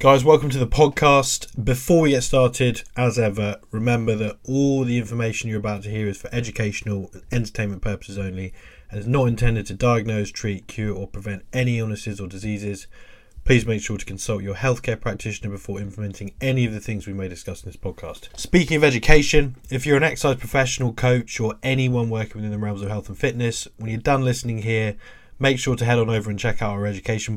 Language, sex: English, male